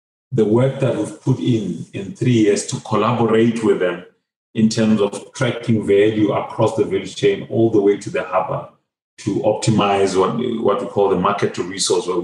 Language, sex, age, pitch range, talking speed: English, male, 30-49, 105-120 Hz, 190 wpm